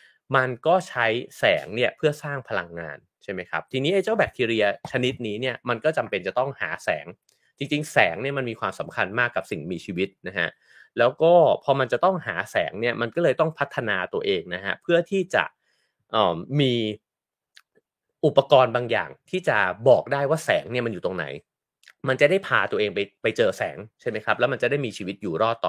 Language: English